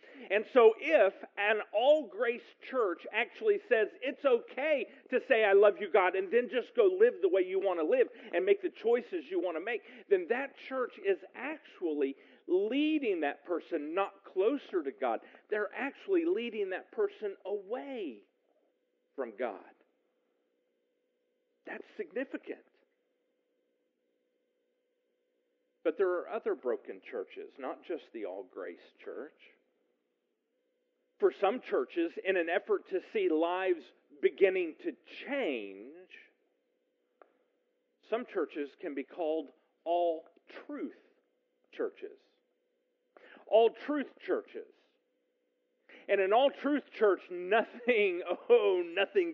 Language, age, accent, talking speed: English, 50-69, American, 120 wpm